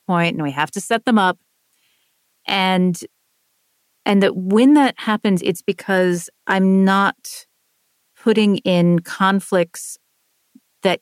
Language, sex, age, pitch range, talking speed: English, female, 40-59, 175-215 Hz, 120 wpm